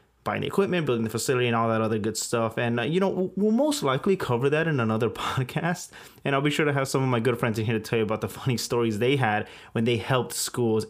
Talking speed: 280 wpm